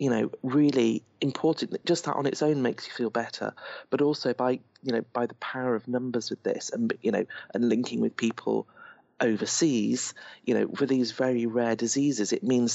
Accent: British